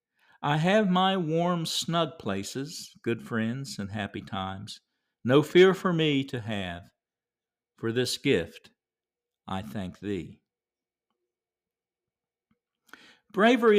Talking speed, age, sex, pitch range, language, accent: 105 wpm, 50-69, male, 115-165 Hz, English, American